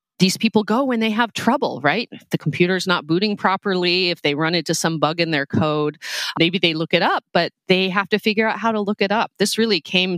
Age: 30-49